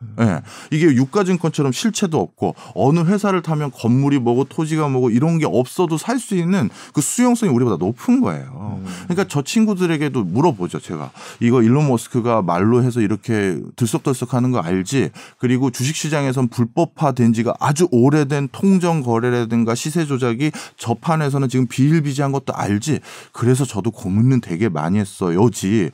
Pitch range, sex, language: 110-160 Hz, male, Korean